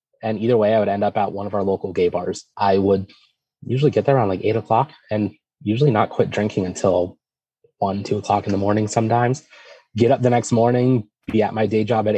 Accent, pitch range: American, 100-120 Hz